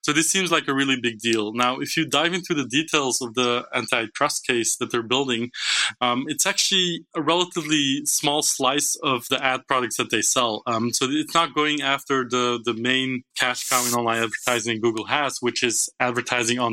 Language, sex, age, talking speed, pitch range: English, male, 20-39, 200 wpm, 120-140 Hz